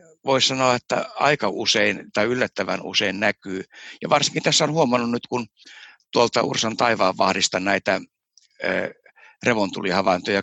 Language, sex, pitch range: Finnish, male, 100-135 Hz